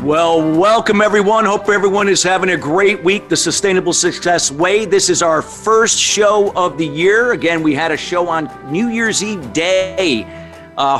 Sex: male